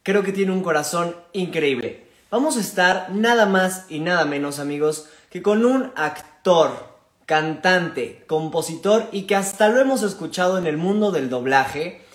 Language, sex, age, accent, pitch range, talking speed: Spanish, male, 20-39, Mexican, 160-215 Hz, 160 wpm